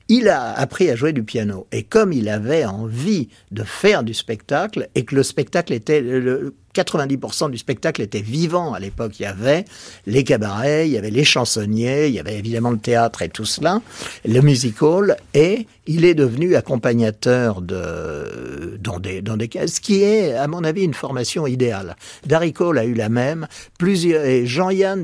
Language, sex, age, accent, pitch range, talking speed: French, male, 60-79, French, 115-170 Hz, 190 wpm